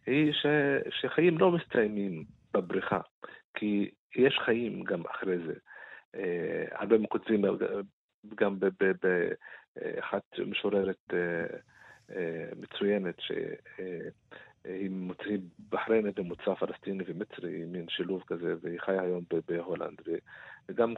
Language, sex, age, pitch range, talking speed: Hebrew, male, 50-69, 90-125 Hz, 110 wpm